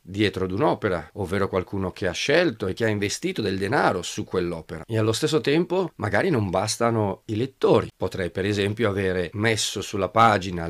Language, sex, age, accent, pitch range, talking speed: Italian, male, 40-59, native, 95-120 Hz, 180 wpm